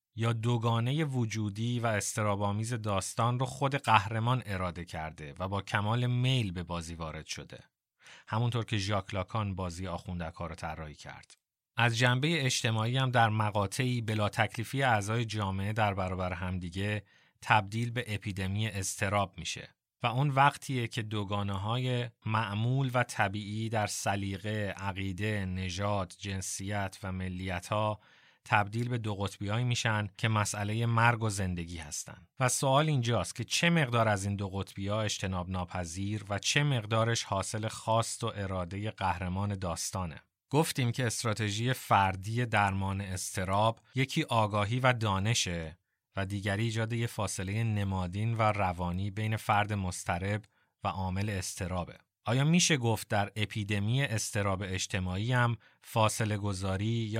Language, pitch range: Persian, 95-115 Hz